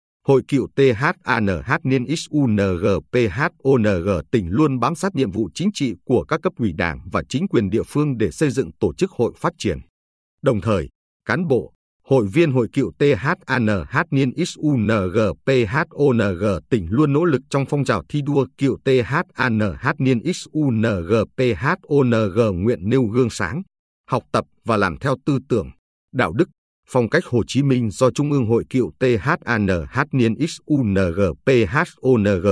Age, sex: 50-69, male